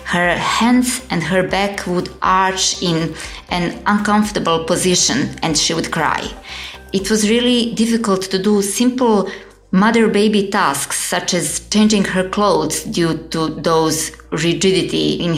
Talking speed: 135 wpm